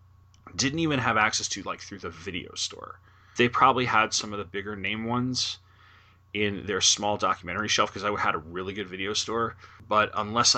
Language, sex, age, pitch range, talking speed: English, male, 30-49, 95-120 Hz, 195 wpm